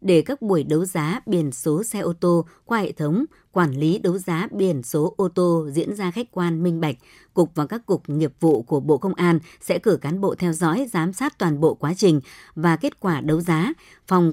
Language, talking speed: Vietnamese, 230 wpm